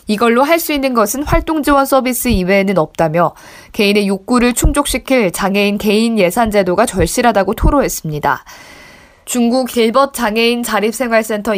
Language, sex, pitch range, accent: Korean, female, 195-260 Hz, native